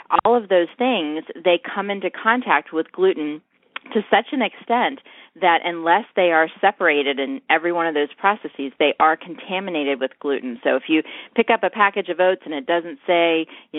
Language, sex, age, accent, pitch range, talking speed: English, female, 30-49, American, 150-180 Hz, 190 wpm